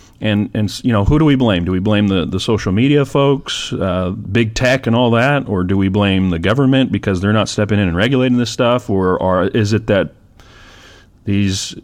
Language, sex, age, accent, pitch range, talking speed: English, male, 40-59, American, 90-120 Hz, 220 wpm